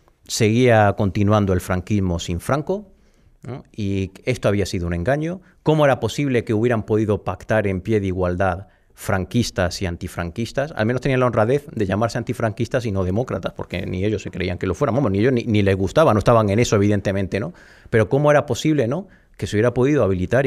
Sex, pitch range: male, 100-135 Hz